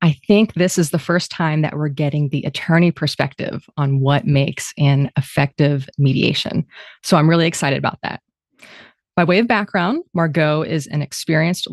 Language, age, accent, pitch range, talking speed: English, 30-49, American, 145-170 Hz, 170 wpm